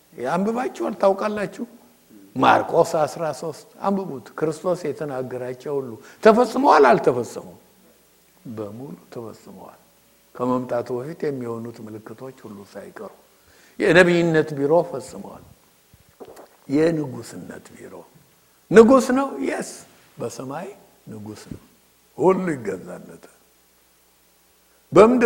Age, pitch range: 60-79, 125-200 Hz